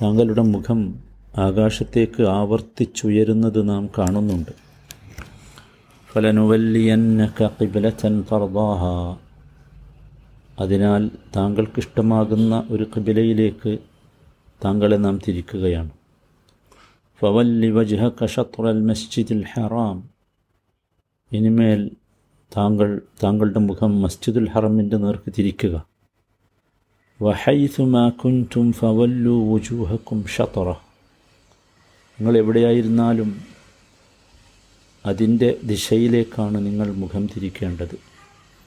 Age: 50-69